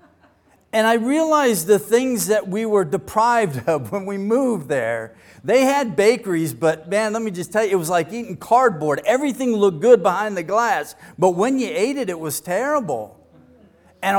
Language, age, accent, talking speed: English, 50-69, American, 185 wpm